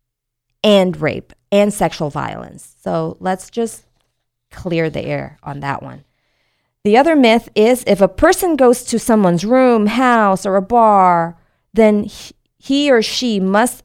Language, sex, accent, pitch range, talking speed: English, female, American, 145-200 Hz, 145 wpm